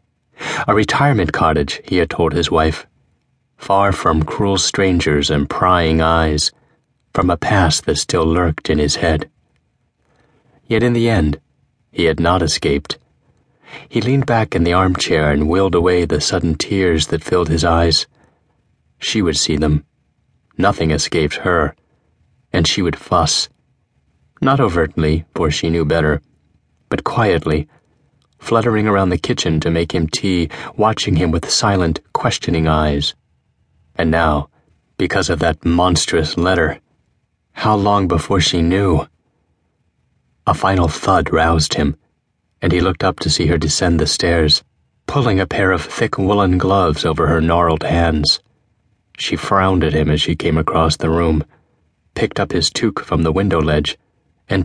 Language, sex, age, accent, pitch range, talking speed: English, male, 30-49, American, 80-95 Hz, 150 wpm